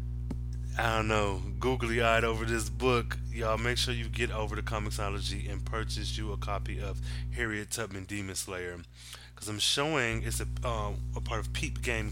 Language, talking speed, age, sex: English, 180 wpm, 20-39, male